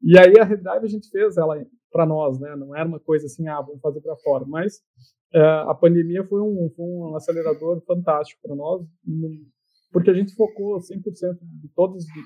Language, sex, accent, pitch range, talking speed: Portuguese, male, Brazilian, 155-195 Hz, 200 wpm